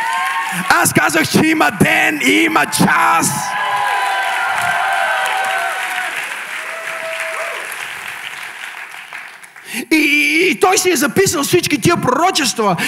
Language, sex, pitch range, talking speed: Bulgarian, male, 180-285 Hz, 85 wpm